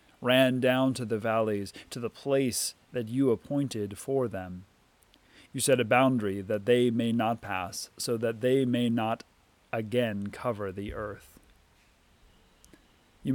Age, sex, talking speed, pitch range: 30-49, male, 145 wpm, 110-130 Hz